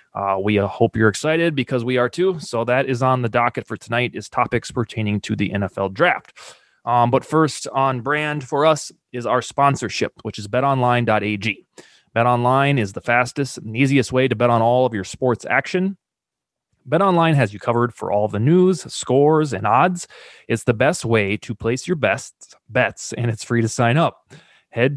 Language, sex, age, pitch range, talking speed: English, male, 20-39, 115-145 Hz, 190 wpm